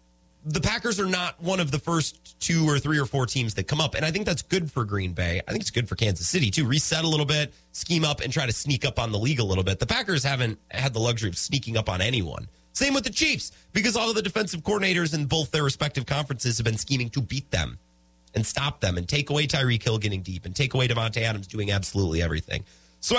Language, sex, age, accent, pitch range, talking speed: English, male, 30-49, American, 105-165 Hz, 260 wpm